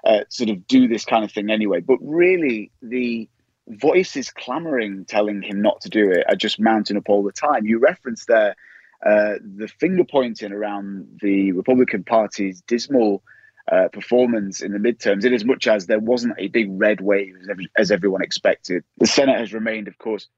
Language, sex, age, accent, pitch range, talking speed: English, male, 30-49, British, 100-125 Hz, 190 wpm